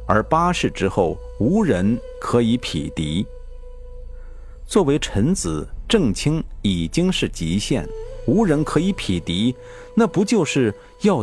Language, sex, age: Chinese, male, 50-69